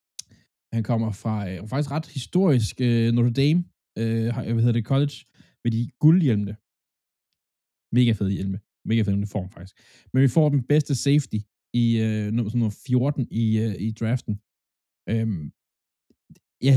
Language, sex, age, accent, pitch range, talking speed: Danish, male, 20-39, native, 110-140 Hz, 135 wpm